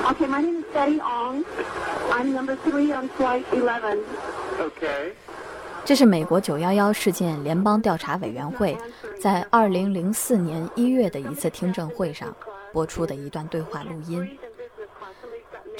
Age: 20-39